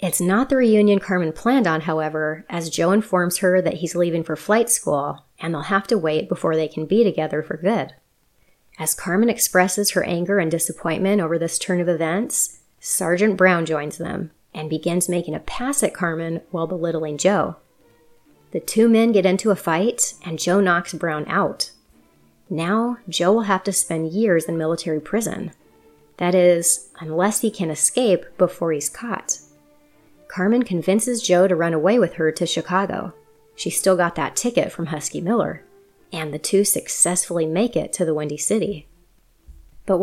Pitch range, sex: 160-205 Hz, female